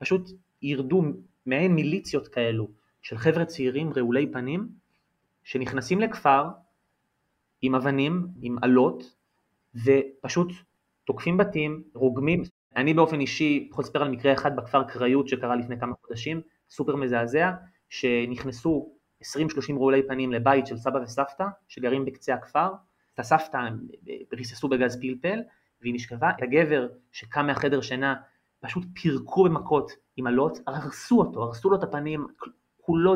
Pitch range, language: 130-155 Hz, Hebrew